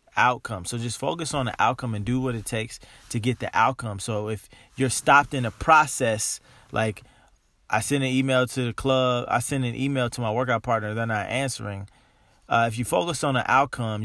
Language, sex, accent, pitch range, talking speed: English, male, American, 105-125 Hz, 210 wpm